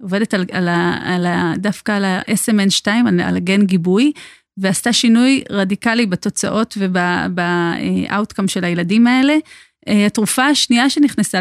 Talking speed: 130 wpm